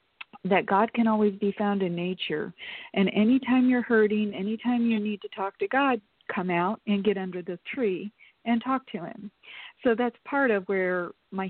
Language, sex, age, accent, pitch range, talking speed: English, female, 40-59, American, 180-220 Hz, 190 wpm